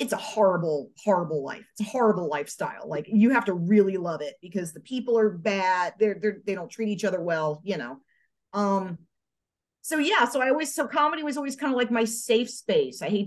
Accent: American